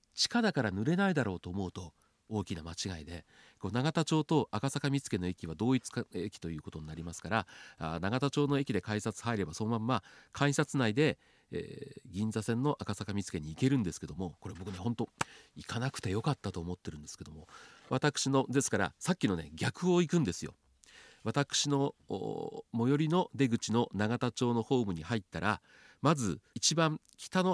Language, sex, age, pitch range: Japanese, male, 40-59, 105-175 Hz